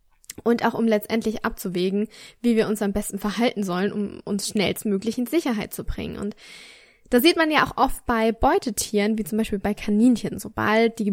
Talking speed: 190 wpm